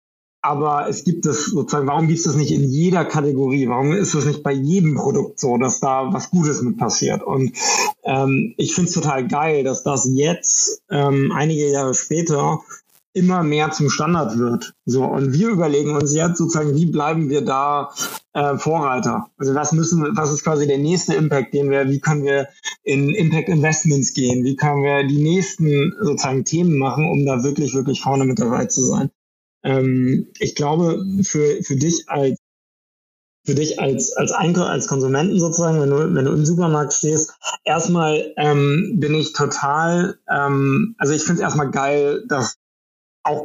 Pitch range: 140-170 Hz